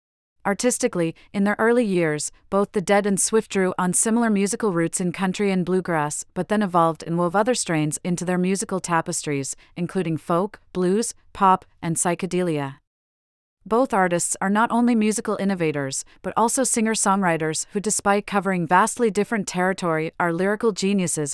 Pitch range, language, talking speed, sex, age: 165-200 Hz, English, 155 wpm, female, 40-59